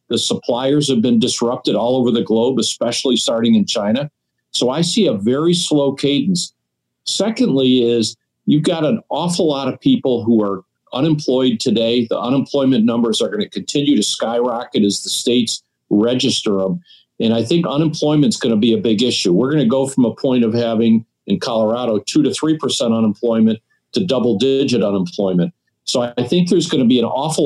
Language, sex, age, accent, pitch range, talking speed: English, male, 50-69, American, 115-150 Hz, 175 wpm